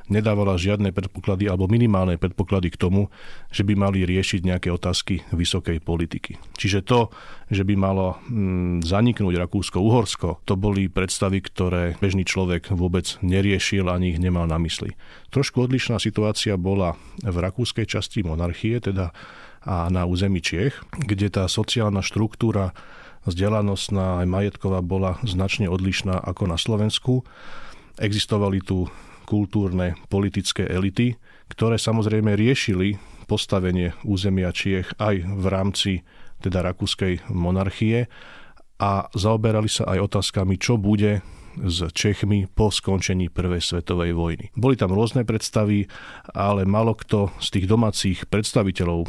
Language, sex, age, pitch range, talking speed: Slovak, male, 40-59, 90-105 Hz, 130 wpm